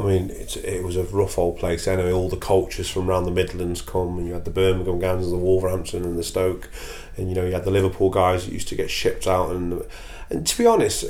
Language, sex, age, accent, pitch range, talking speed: English, male, 30-49, British, 85-100 Hz, 265 wpm